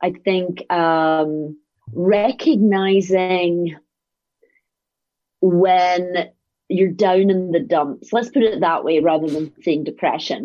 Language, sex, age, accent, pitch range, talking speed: English, female, 30-49, British, 155-195 Hz, 110 wpm